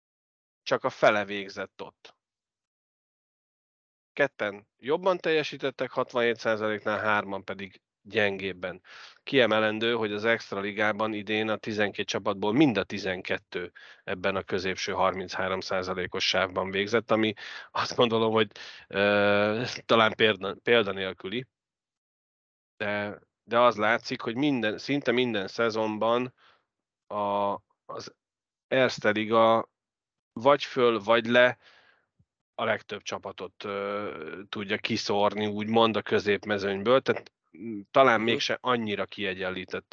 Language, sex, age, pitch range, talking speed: Hungarian, male, 30-49, 105-125 Hz, 100 wpm